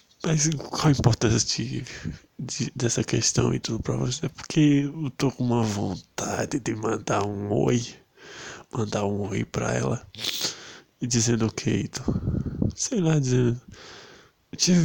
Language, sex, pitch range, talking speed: Portuguese, male, 115-145 Hz, 145 wpm